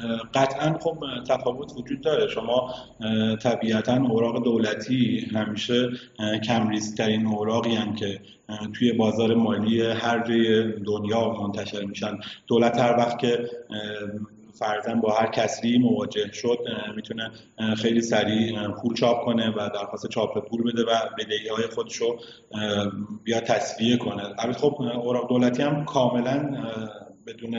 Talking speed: 120 wpm